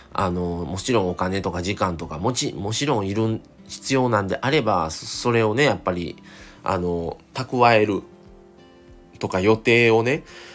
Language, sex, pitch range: Japanese, male, 90-120 Hz